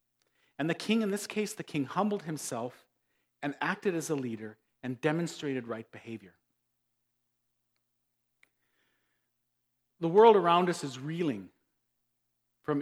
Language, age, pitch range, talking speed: English, 40-59, 120-155 Hz, 120 wpm